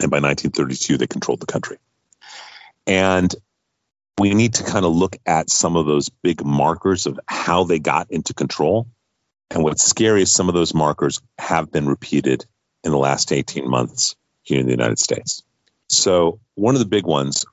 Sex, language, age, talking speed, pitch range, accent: male, English, 40-59, 180 wpm, 70-95 Hz, American